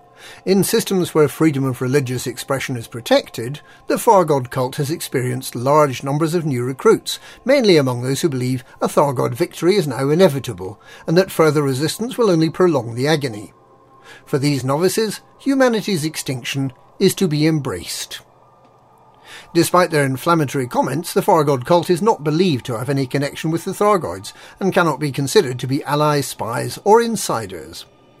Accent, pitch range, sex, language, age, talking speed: British, 135-180 Hz, male, English, 50-69, 160 wpm